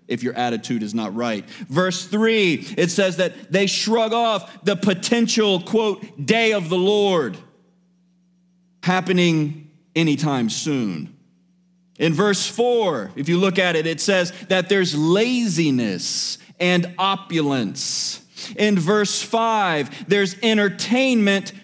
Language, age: English, 40-59